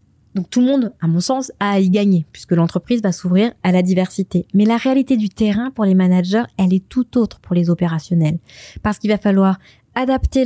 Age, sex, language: 20-39, female, French